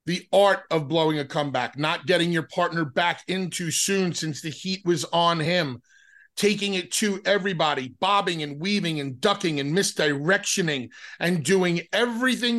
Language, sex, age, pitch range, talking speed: English, male, 30-49, 155-195 Hz, 160 wpm